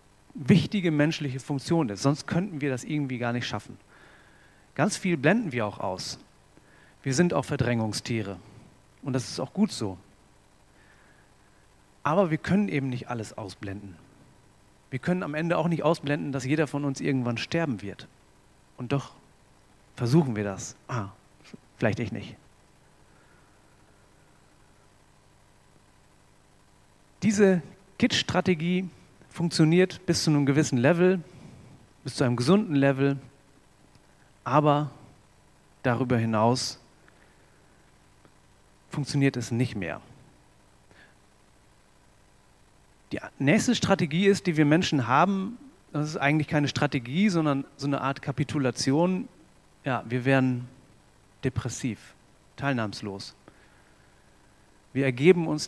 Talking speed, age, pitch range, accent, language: 110 wpm, 40-59, 120-160 Hz, German, German